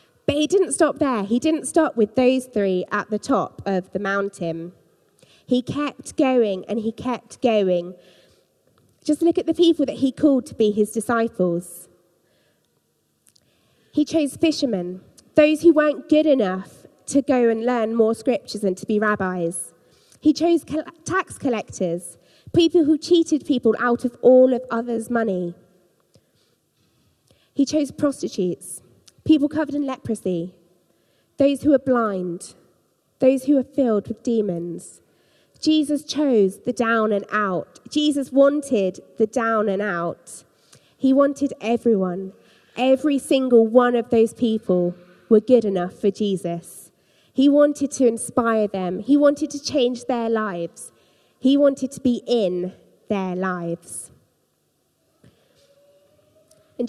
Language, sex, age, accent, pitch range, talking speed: English, female, 20-39, British, 190-280 Hz, 135 wpm